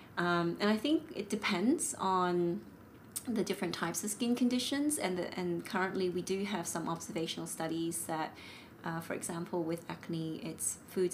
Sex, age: female, 30-49